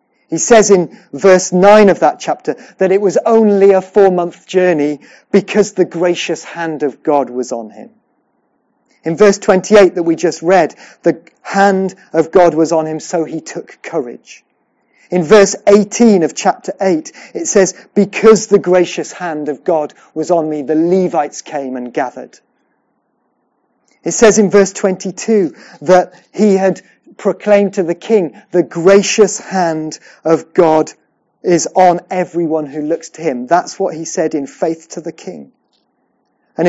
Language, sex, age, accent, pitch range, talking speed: English, male, 40-59, British, 160-205 Hz, 160 wpm